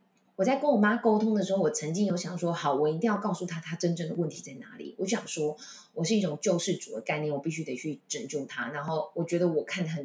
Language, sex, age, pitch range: Chinese, female, 20-39, 170-230 Hz